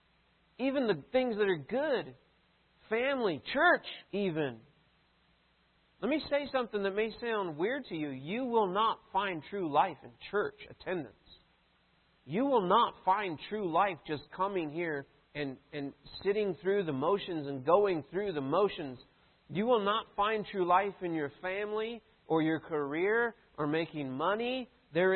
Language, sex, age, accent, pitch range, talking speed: English, male, 40-59, American, 145-200 Hz, 155 wpm